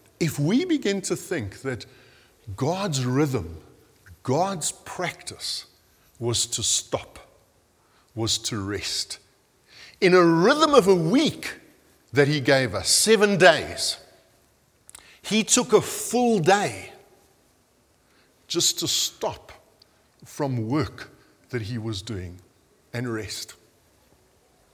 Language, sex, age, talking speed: English, male, 50-69, 105 wpm